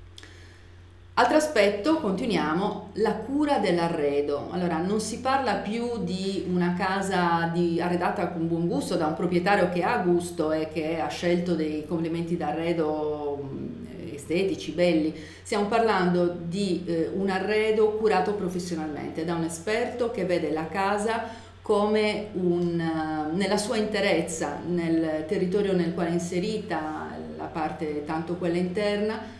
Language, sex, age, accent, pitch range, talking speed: Italian, female, 40-59, native, 155-185 Hz, 135 wpm